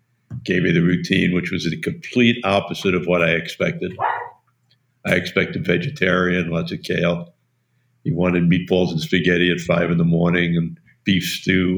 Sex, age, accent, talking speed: male, 60-79, American, 165 wpm